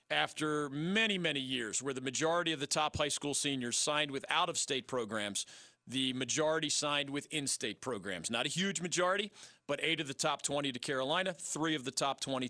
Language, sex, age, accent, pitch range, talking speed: English, male, 40-59, American, 130-160 Hz, 190 wpm